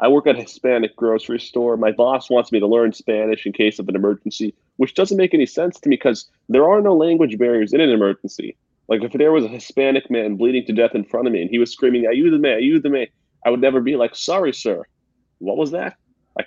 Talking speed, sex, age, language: 255 wpm, male, 30-49, English